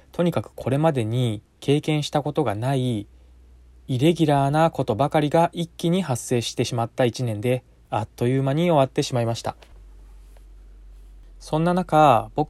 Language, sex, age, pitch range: Japanese, male, 20-39, 115-145 Hz